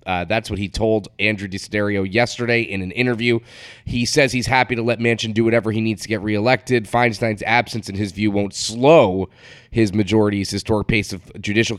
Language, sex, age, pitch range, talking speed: English, male, 30-49, 95-120 Hz, 195 wpm